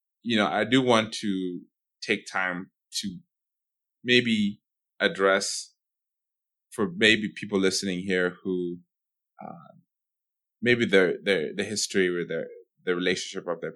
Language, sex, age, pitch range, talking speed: English, male, 20-39, 90-105 Hz, 125 wpm